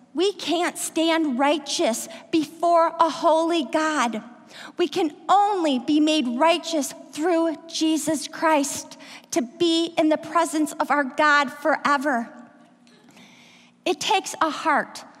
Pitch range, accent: 260-320 Hz, American